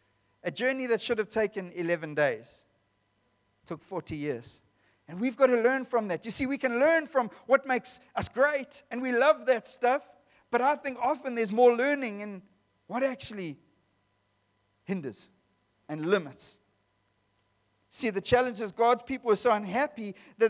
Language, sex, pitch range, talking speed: English, male, 190-270 Hz, 160 wpm